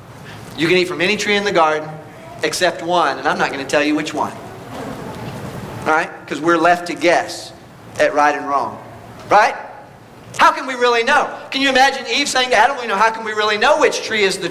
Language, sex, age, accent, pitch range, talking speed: English, male, 40-59, American, 155-265 Hz, 225 wpm